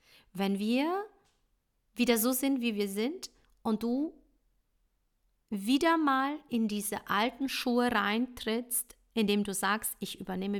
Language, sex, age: German, female, 50-69